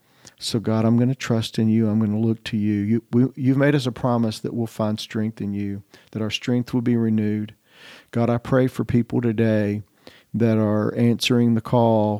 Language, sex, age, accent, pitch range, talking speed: English, male, 50-69, American, 110-120 Hz, 215 wpm